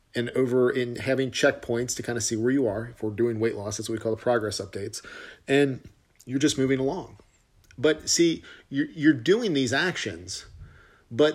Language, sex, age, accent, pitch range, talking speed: English, male, 40-59, American, 110-135 Hz, 195 wpm